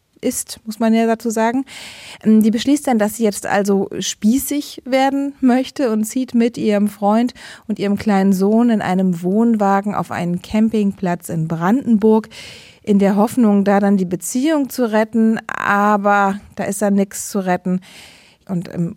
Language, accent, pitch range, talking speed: German, German, 180-230 Hz, 160 wpm